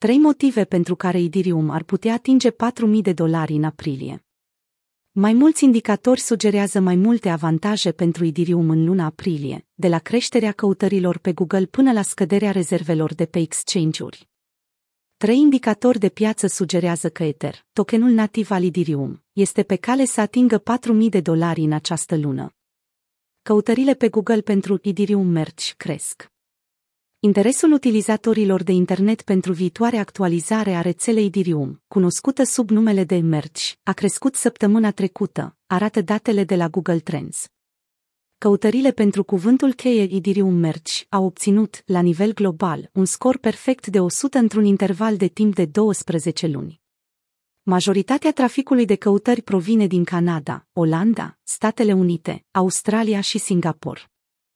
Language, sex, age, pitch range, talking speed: Romanian, female, 30-49, 175-220 Hz, 140 wpm